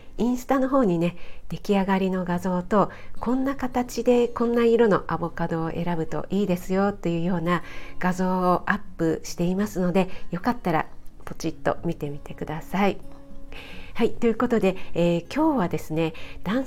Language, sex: Japanese, female